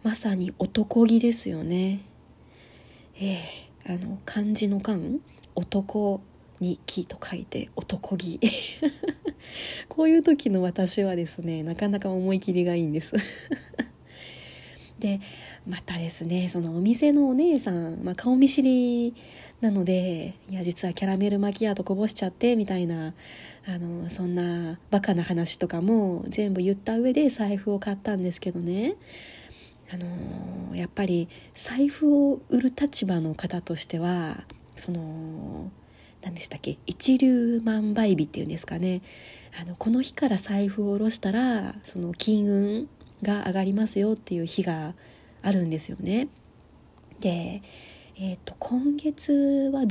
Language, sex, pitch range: Japanese, female, 180-230 Hz